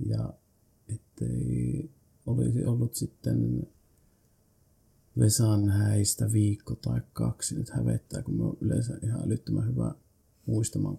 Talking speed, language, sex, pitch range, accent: 105 wpm, Finnish, male, 105-120 Hz, native